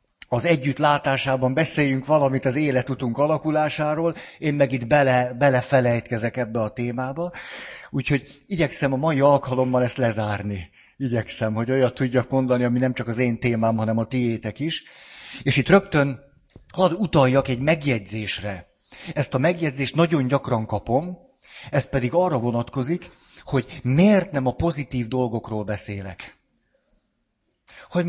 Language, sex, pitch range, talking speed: Hungarian, male, 125-160 Hz, 130 wpm